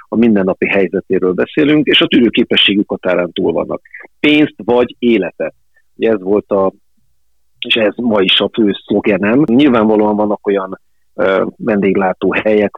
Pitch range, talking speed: 100-110 Hz, 145 wpm